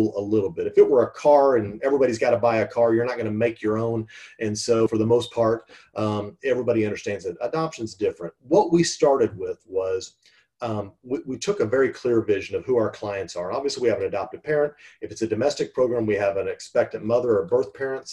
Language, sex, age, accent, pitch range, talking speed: English, male, 40-59, American, 110-175 Hz, 235 wpm